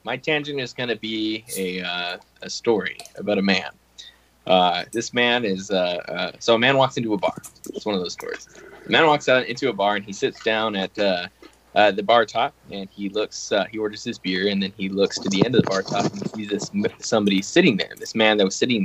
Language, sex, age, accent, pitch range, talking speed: English, male, 20-39, American, 95-120 Hz, 250 wpm